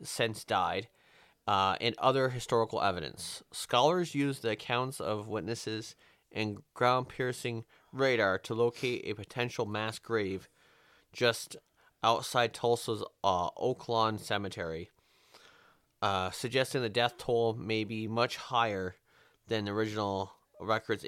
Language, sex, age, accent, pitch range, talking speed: English, male, 30-49, American, 105-130 Hz, 115 wpm